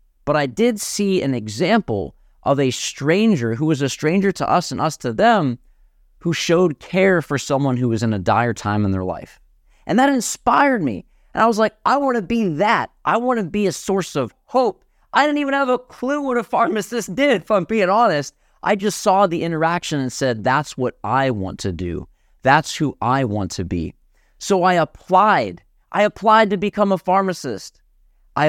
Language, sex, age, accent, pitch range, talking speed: English, male, 30-49, American, 115-190 Hz, 205 wpm